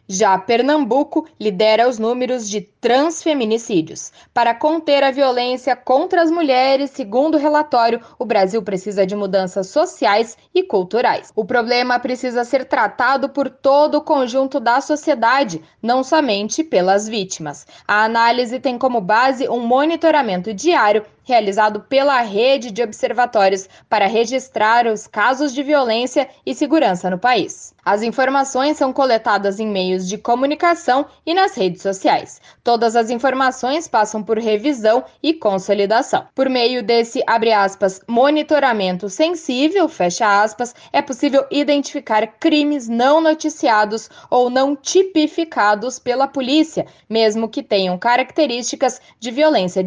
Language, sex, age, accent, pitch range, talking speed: Portuguese, female, 10-29, Brazilian, 215-285 Hz, 130 wpm